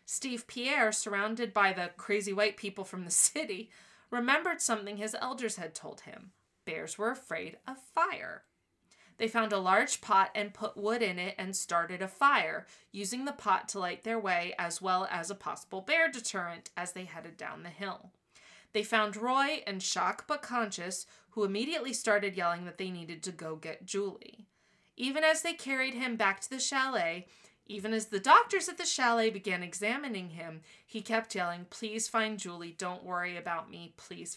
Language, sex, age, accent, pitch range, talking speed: English, female, 20-39, American, 180-240 Hz, 185 wpm